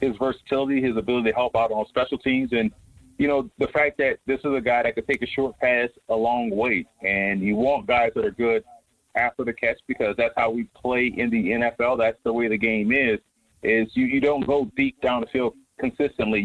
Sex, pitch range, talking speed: male, 110-140 Hz, 230 wpm